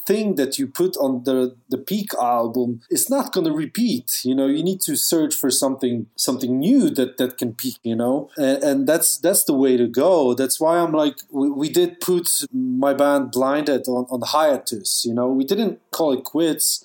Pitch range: 130-170 Hz